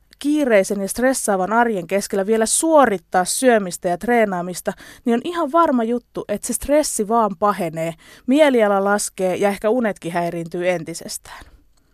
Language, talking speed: Finnish, 135 wpm